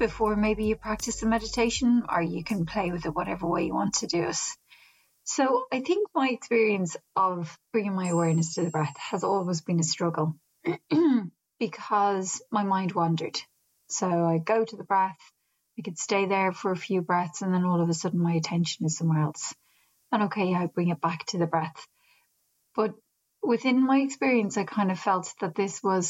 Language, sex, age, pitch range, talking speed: English, female, 30-49, 175-215 Hz, 195 wpm